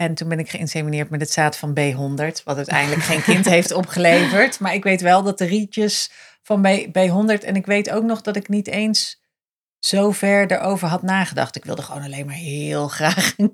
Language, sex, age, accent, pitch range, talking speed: Dutch, female, 40-59, Dutch, 165-210 Hz, 215 wpm